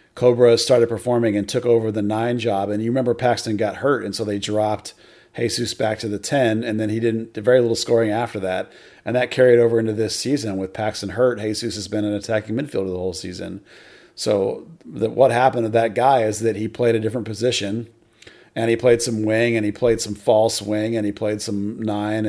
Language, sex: English, male